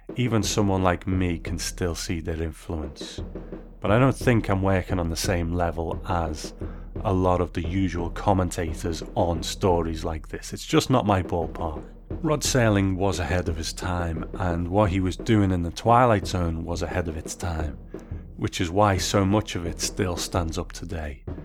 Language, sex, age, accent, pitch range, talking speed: English, male, 30-49, British, 85-105 Hz, 185 wpm